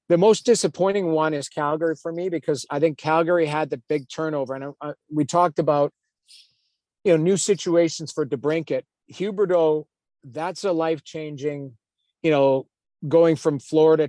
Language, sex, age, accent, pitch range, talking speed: English, male, 50-69, American, 145-175 Hz, 150 wpm